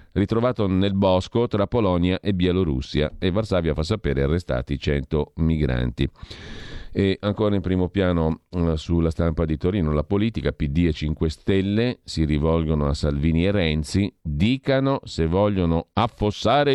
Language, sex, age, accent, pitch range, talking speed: Italian, male, 50-69, native, 80-100 Hz, 140 wpm